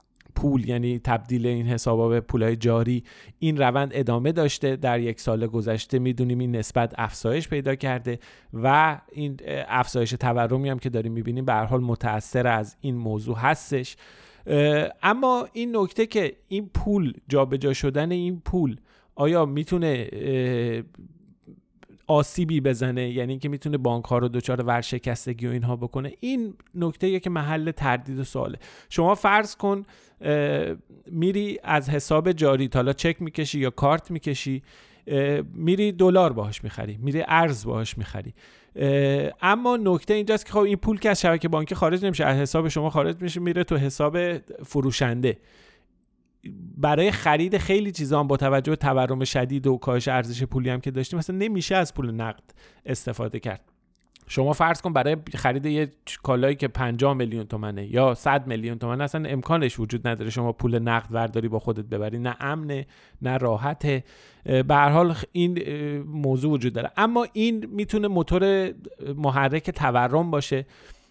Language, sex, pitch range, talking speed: Persian, male, 125-165 Hz, 155 wpm